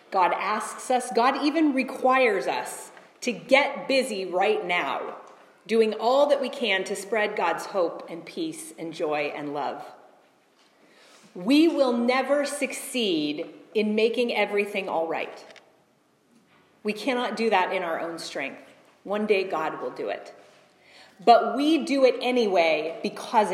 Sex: female